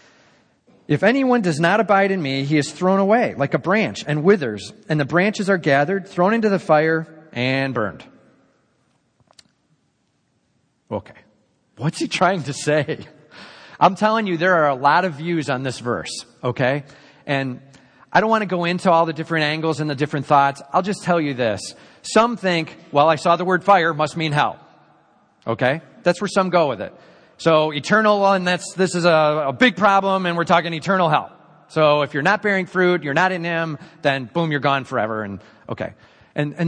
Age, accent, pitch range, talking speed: 30-49, American, 130-180 Hz, 195 wpm